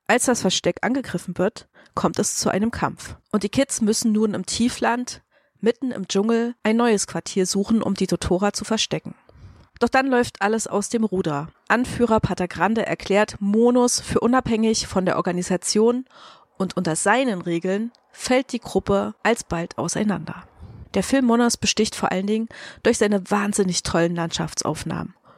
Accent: German